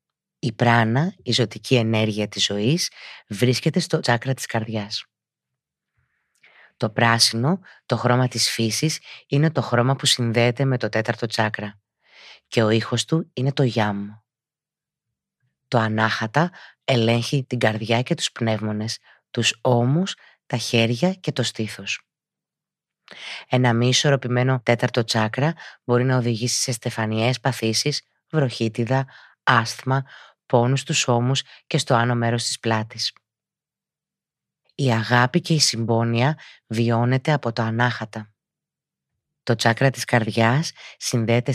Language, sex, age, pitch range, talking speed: Greek, female, 20-39, 115-135 Hz, 120 wpm